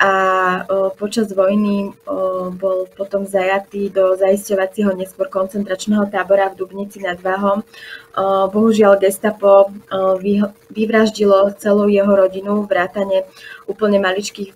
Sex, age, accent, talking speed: female, 20-39, native, 100 wpm